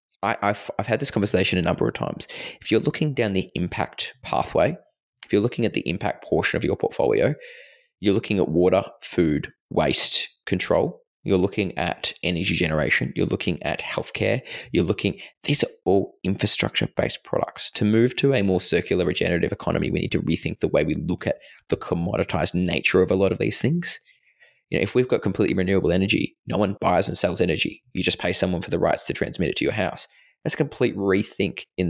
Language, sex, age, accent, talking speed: English, male, 20-39, Australian, 200 wpm